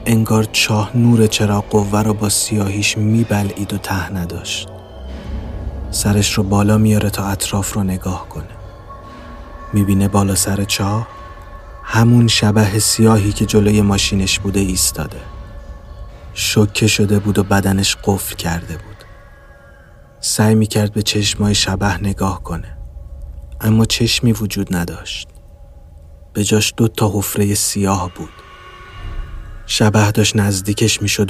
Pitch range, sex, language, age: 90-105 Hz, male, Persian, 30-49